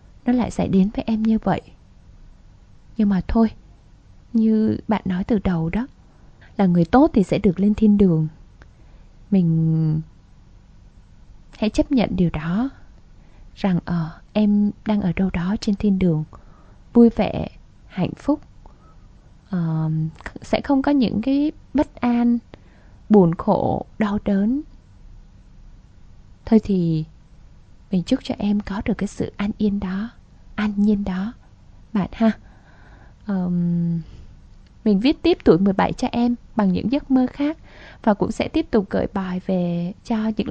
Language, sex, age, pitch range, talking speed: Vietnamese, female, 20-39, 180-230 Hz, 150 wpm